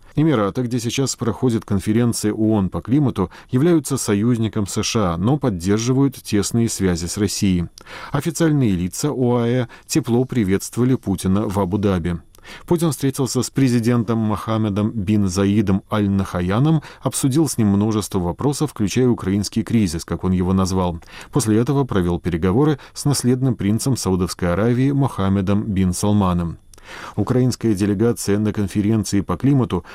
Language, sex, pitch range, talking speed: Russian, male, 95-125 Hz, 125 wpm